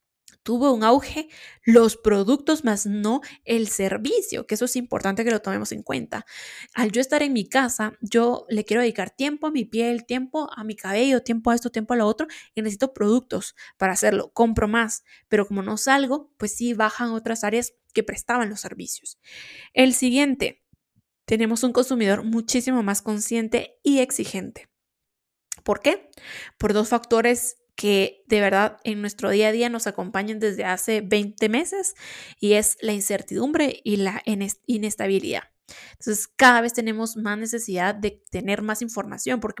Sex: female